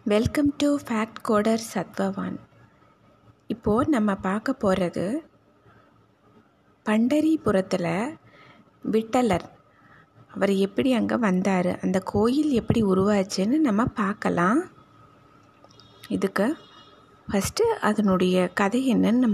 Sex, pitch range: female, 190-250 Hz